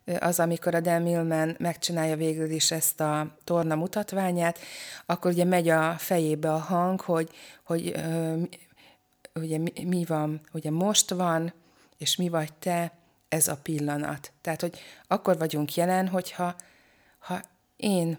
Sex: female